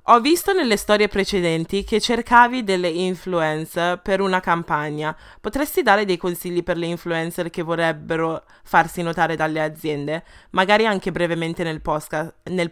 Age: 20-39